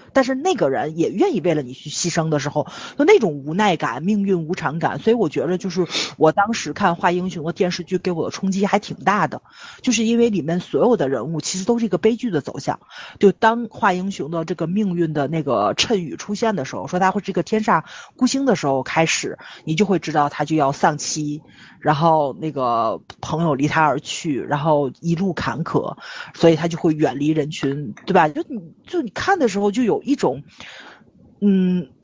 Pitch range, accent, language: 160-235 Hz, native, Chinese